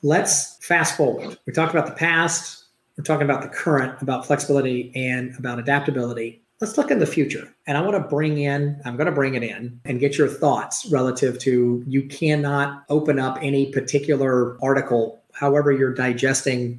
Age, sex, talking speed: 40-59, male, 180 wpm